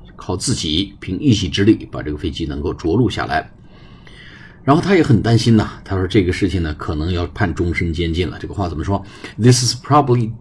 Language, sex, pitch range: Chinese, male, 90-110 Hz